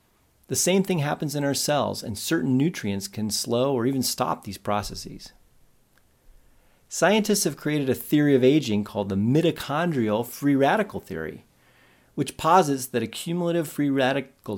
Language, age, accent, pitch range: English, 30-49, American, 105-150 Hz